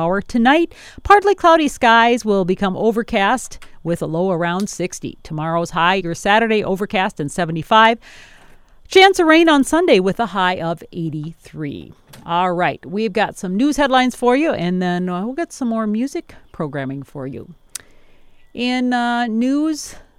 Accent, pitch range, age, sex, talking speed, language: American, 180-240 Hz, 40-59, female, 150 wpm, English